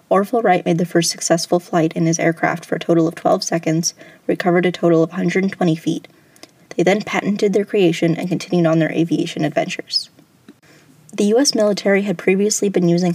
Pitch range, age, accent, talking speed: 165-190 Hz, 10-29, American, 185 wpm